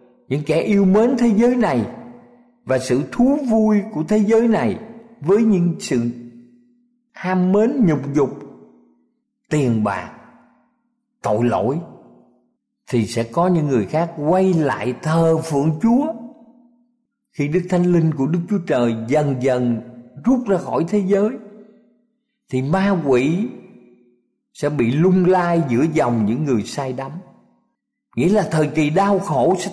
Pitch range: 135-205 Hz